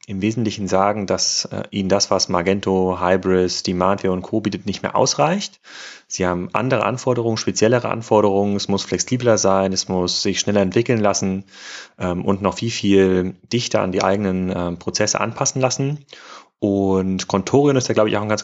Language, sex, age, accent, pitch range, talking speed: German, male, 30-49, German, 95-115 Hz, 180 wpm